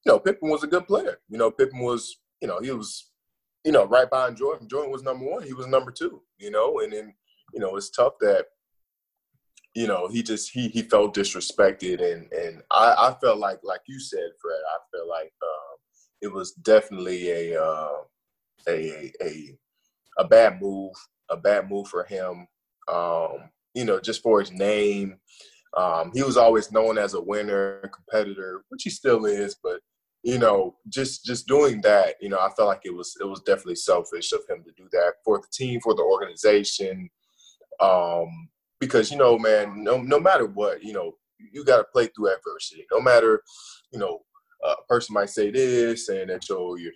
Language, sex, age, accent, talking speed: English, male, 20-39, American, 195 wpm